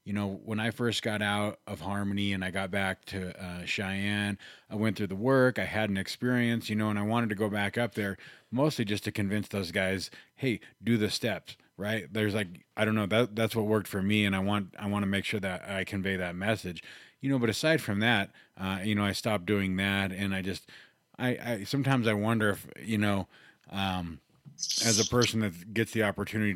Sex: male